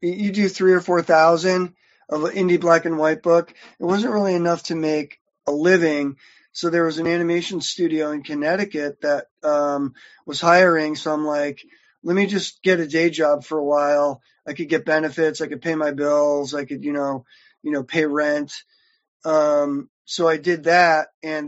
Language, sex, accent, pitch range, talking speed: English, male, American, 145-175 Hz, 185 wpm